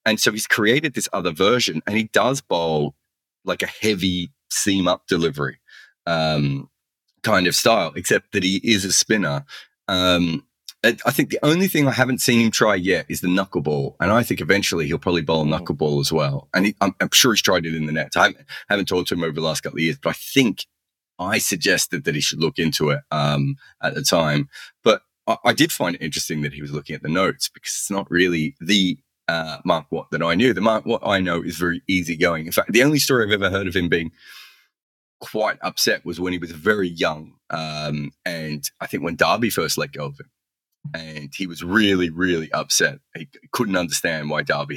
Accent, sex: Australian, male